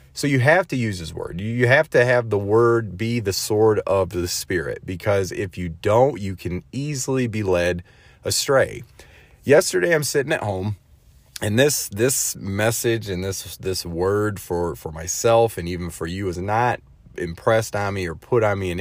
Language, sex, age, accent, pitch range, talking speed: English, male, 30-49, American, 90-120 Hz, 190 wpm